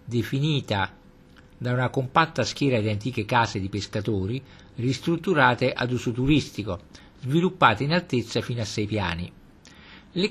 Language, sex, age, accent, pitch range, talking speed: Italian, male, 50-69, native, 105-150 Hz, 130 wpm